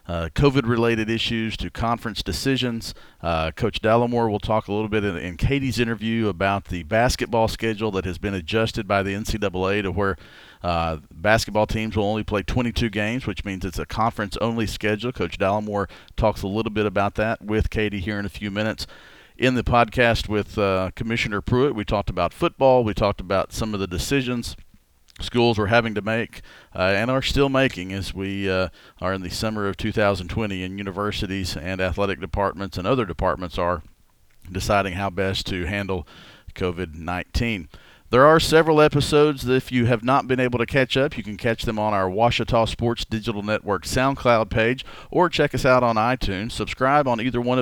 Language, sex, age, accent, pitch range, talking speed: English, male, 40-59, American, 95-120 Hz, 185 wpm